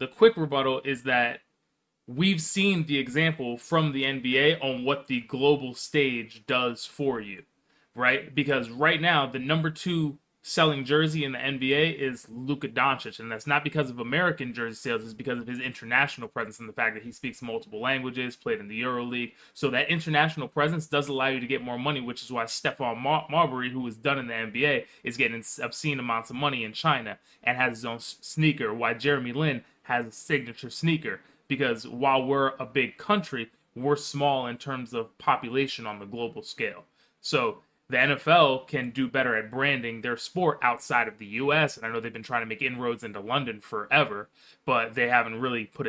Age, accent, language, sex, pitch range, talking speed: 20-39, American, English, male, 115-145 Hz, 195 wpm